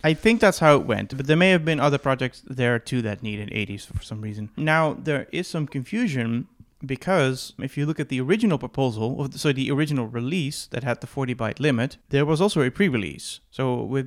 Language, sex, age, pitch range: English, male, 30-49, 115-145 Hz